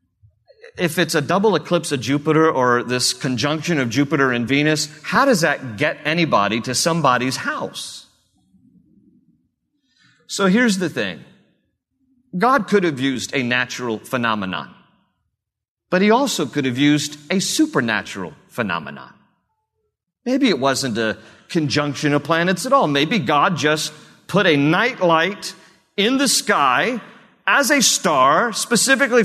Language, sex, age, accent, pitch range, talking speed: English, male, 40-59, American, 125-185 Hz, 135 wpm